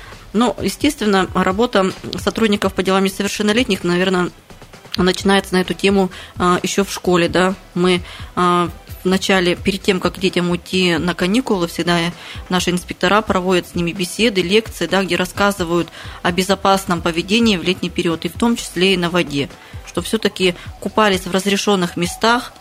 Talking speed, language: 150 wpm, Russian